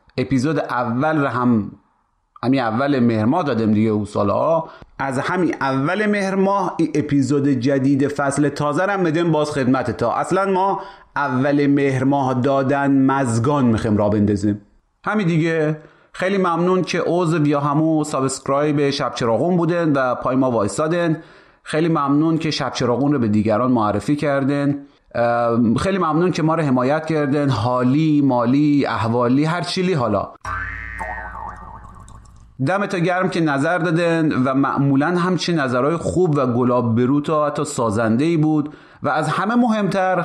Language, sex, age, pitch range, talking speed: Persian, male, 30-49, 130-165 Hz, 140 wpm